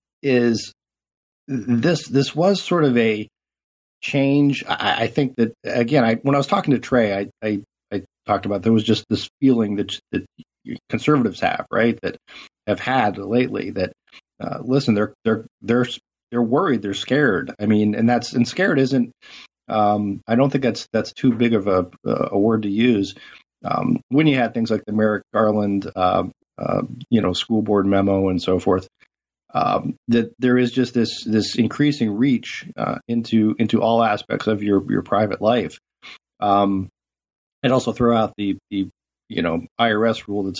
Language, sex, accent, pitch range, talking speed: English, male, American, 100-125 Hz, 175 wpm